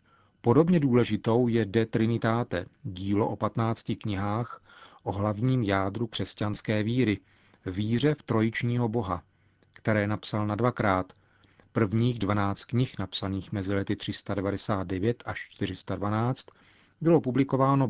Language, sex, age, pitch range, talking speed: Czech, male, 40-59, 100-125 Hz, 110 wpm